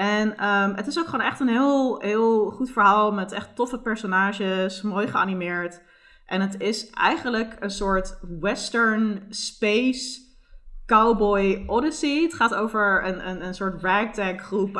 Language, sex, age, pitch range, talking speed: Dutch, female, 20-39, 175-210 Hz, 150 wpm